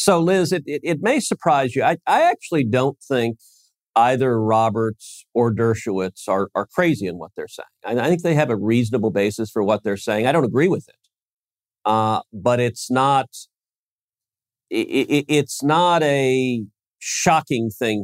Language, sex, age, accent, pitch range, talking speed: English, male, 50-69, American, 105-130 Hz, 175 wpm